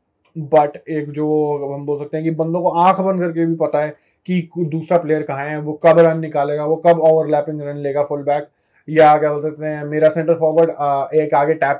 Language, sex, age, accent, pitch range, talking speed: Hindi, male, 20-39, native, 140-170 Hz, 220 wpm